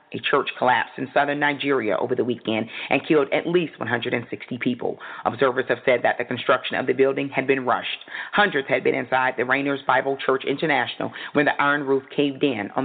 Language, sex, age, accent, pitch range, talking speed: English, female, 40-59, American, 135-180 Hz, 200 wpm